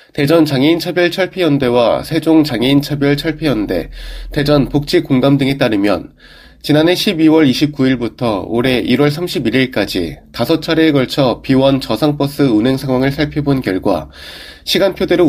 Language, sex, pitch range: Korean, male, 130-160 Hz